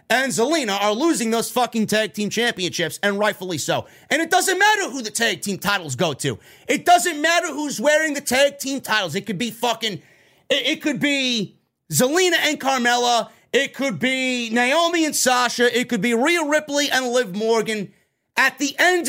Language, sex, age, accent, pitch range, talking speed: English, male, 30-49, American, 190-285 Hz, 190 wpm